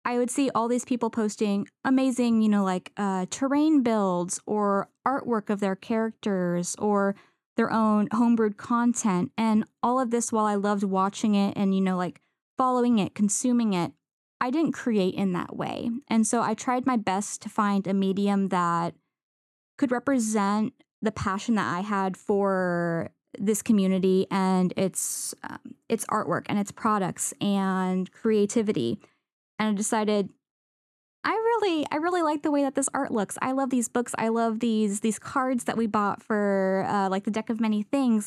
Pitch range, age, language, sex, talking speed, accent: 200-250 Hz, 10-29, English, female, 175 wpm, American